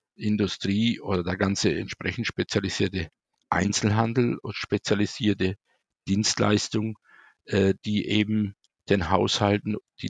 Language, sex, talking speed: German, male, 95 wpm